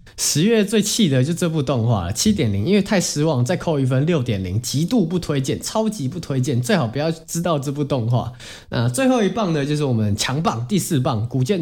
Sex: male